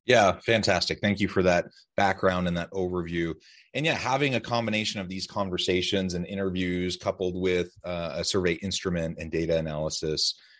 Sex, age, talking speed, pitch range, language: male, 30-49, 165 wpm, 85-100 Hz, English